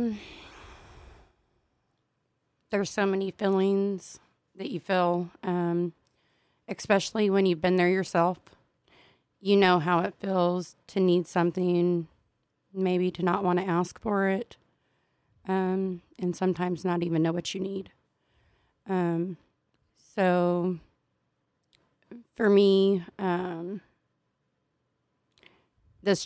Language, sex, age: English, female, 30-49